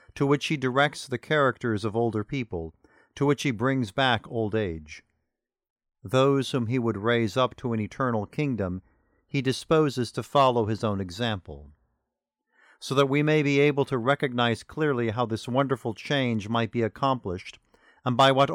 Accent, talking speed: American, 170 wpm